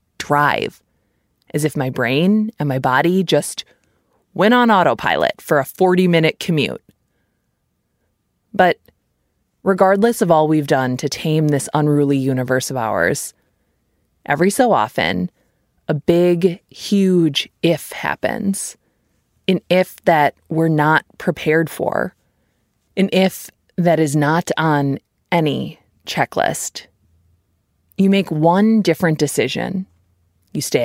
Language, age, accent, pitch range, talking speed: English, 20-39, American, 130-185 Hz, 115 wpm